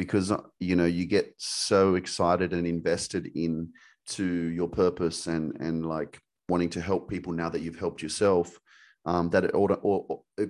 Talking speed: 170 wpm